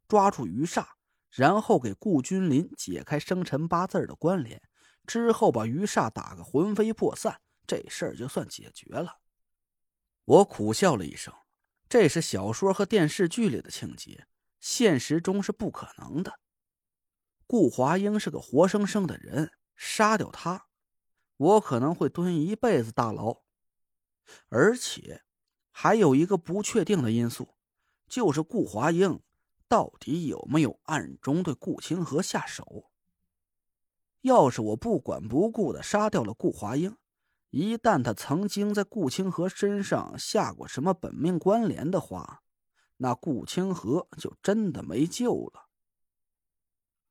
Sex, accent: male, native